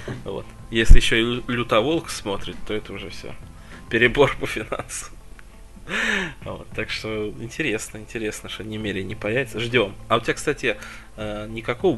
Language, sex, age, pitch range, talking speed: Russian, male, 20-39, 100-120 Hz, 150 wpm